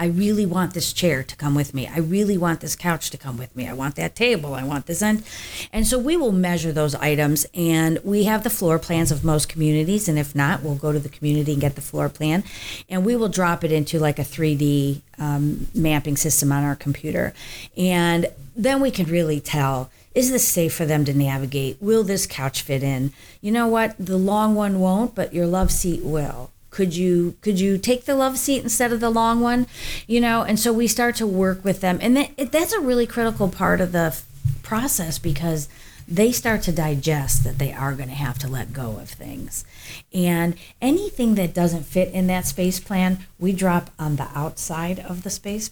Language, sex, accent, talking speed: English, female, American, 220 wpm